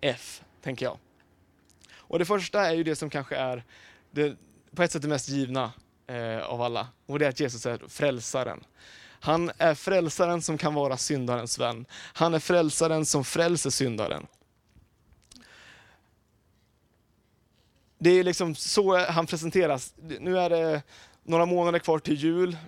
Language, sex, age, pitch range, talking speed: Swedish, male, 20-39, 120-170 Hz, 135 wpm